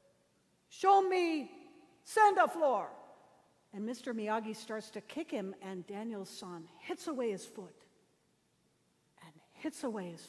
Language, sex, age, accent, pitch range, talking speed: English, female, 60-79, American, 210-325 Hz, 135 wpm